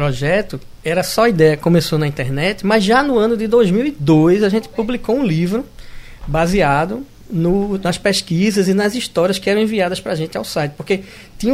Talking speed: 175 wpm